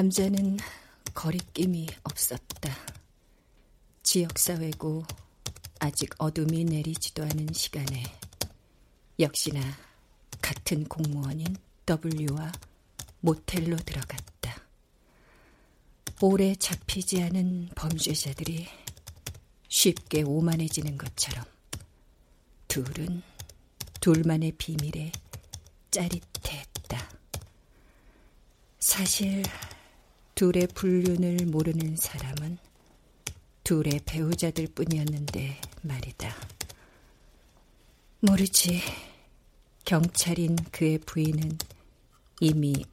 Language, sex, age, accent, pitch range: Korean, female, 40-59, native, 145-185 Hz